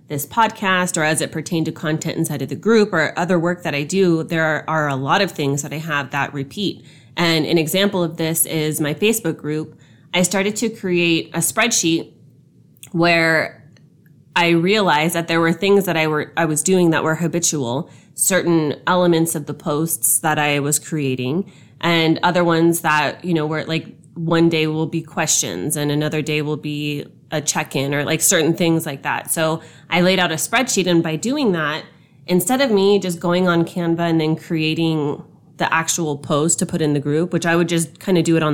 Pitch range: 150-175 Hz